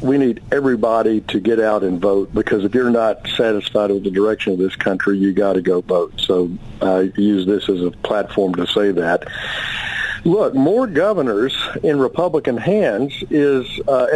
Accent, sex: American, male